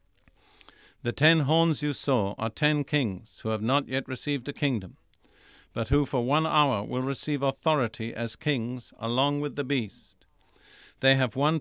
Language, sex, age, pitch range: English, male, 50-69, 110-145 Hz